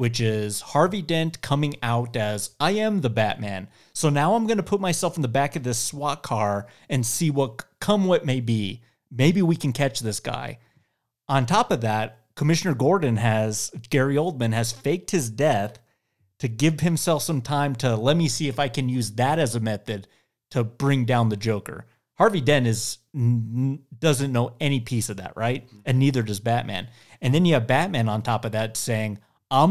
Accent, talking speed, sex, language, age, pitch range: American, 200 wpm, male, English, 30-49, 115-155 Hz